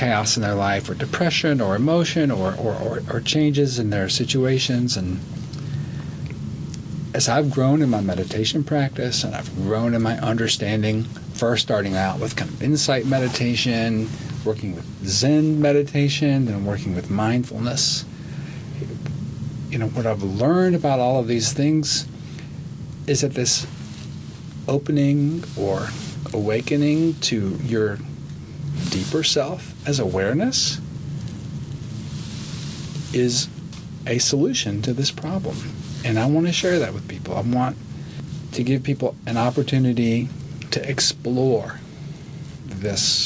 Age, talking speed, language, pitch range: 40-59, 130 wpm, English, 115-150 Hz